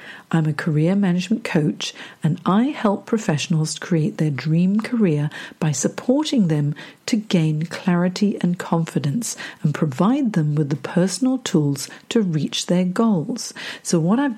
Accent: British